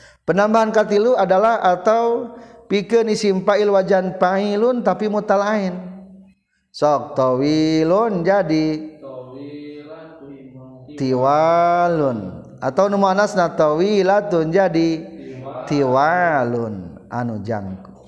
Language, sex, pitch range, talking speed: Indonesian, male, 130-175 Hz, 75 wpm